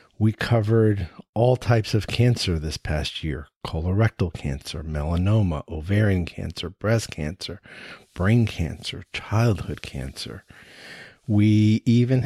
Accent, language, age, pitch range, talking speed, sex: American, English, 50-69, 85-110 Hz, 110 wpm, male